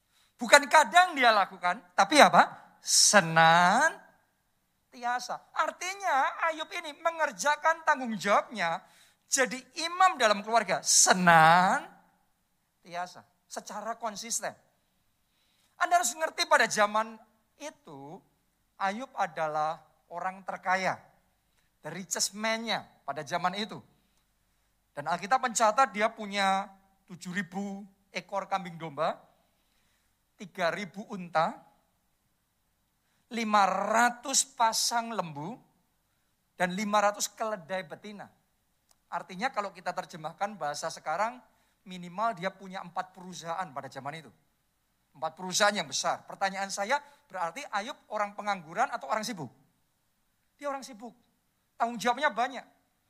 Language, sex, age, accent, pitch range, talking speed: Indonesian, male, 50-69, native, 185-255 Hz, 95 wpm